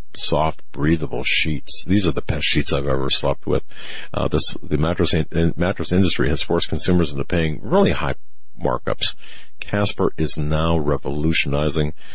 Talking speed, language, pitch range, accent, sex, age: 155 wpm, English, 70-80 Hz, American, male, 50-69